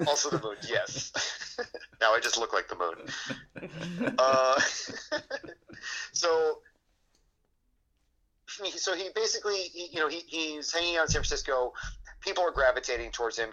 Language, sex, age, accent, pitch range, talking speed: English, male, 30-49, American, 115-175 Hz, 140 wpm